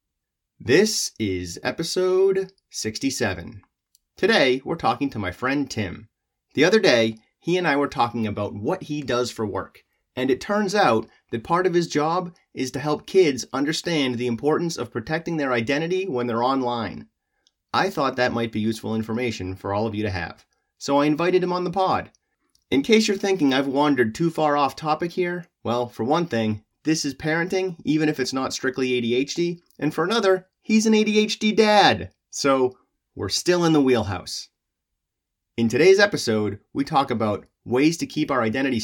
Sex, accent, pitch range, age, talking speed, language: male, American, 110-165 Hz, 30-49, 180 wpm, English